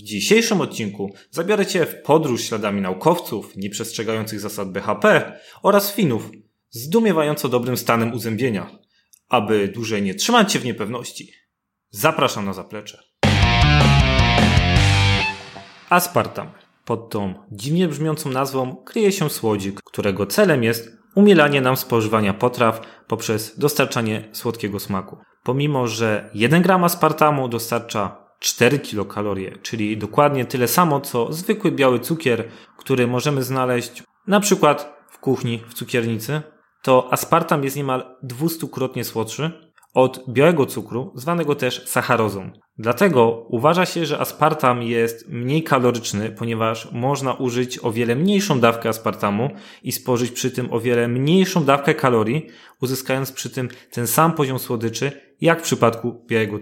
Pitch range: 110-145 Hz